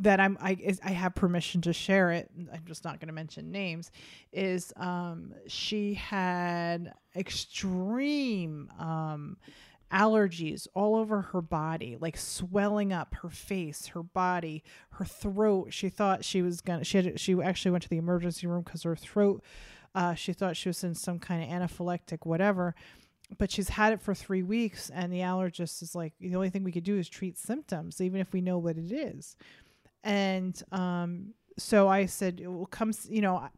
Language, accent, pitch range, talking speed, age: English, American, 175-205 Hz, 185 wpm, 30-49